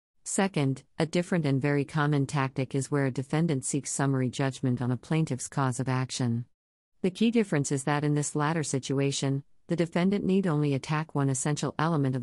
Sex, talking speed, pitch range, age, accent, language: female, 185 wpm, 130-155 Hz, 50-69, American, English